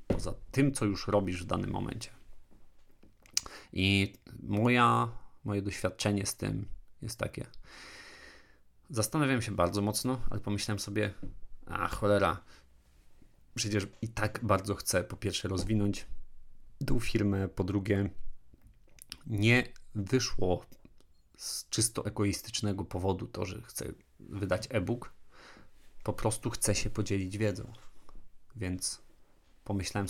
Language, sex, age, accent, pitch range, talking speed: Polish, male, 40-59, native, 95-115 Hz, 110 wpm